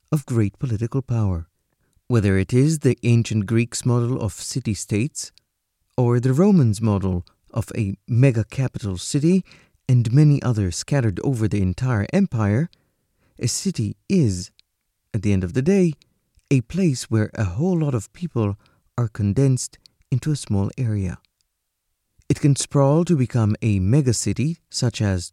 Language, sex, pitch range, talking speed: English, male, 100-145 Hz, 145 wpm